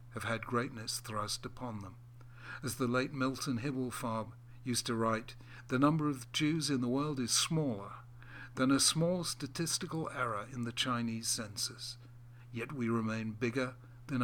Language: English